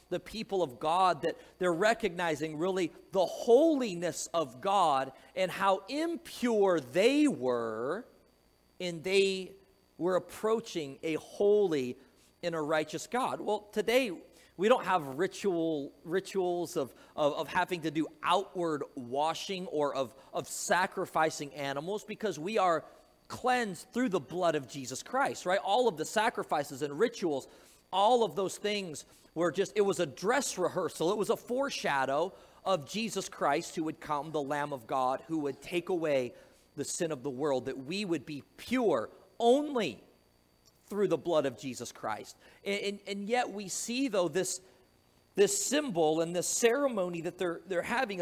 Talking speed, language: 160 wpm, English